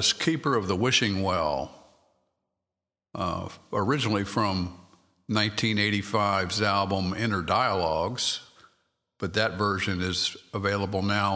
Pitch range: 90-105 Hz